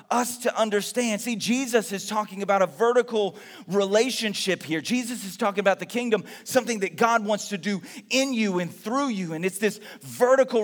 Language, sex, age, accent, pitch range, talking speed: English, male, 30-49, American, 200-245 Hz, 185 wpm